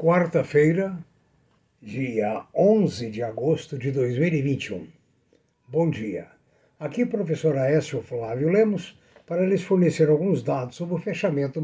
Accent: Brazilian